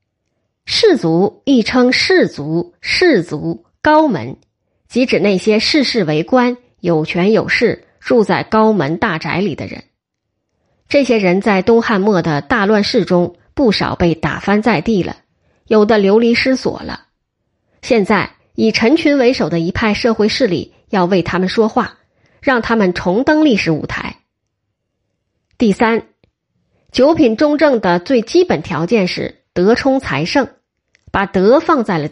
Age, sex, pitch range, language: 20-39, female, 175-250 Hz, Chinese